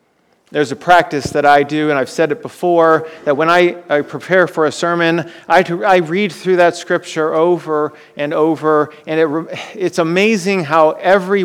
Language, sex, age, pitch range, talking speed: English, male, 40-59, 140-175 Hz, 175 wpm